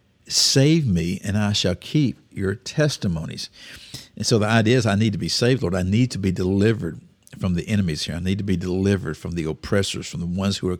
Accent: American